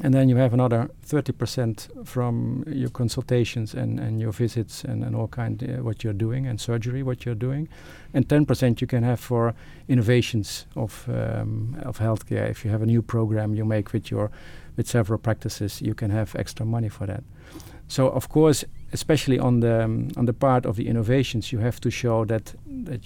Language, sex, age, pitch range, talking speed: English, male, 50-69, 110-125 Hz, 200 wpm